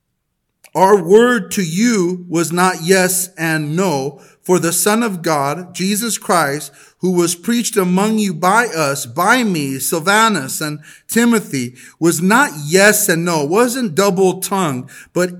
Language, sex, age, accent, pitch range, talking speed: English, male, 40-59, American, 180-230 Hz, 150 wpm